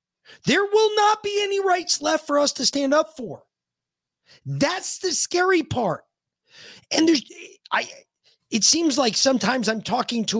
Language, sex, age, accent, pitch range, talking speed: English, male, 30-49, American, 135-225 Hz, 155 wpm